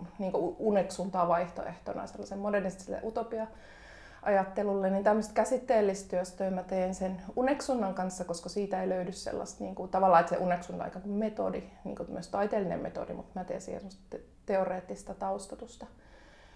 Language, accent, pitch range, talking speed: Finnish, native, 185-205 Hz, 125 wpm